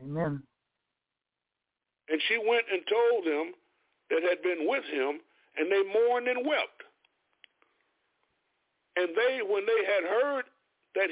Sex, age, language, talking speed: male, 50-69, English, 125 wpm